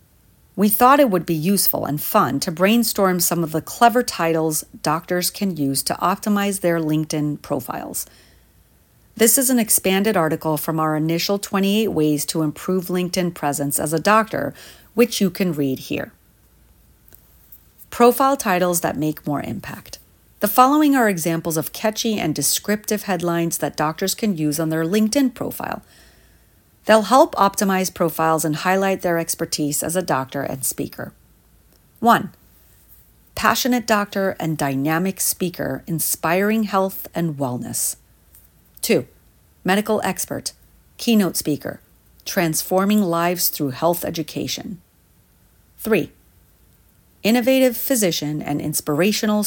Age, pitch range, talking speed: 40-59, 150-200 Hz, 130 wpm